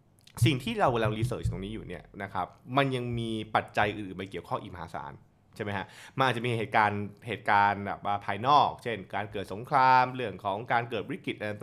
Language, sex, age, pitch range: Thai, male, 20-39, 100-130 Hz